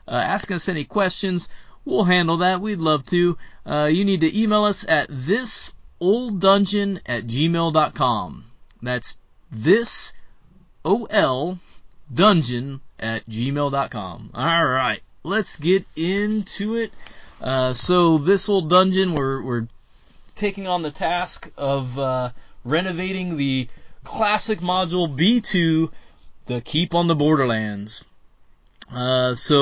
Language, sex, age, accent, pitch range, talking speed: English, male, 20-39, American, 125-175 Hz, 120 wpm